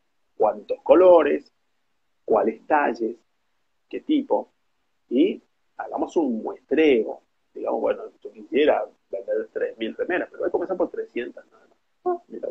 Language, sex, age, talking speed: Spanish, male, 40-59, 125 wpm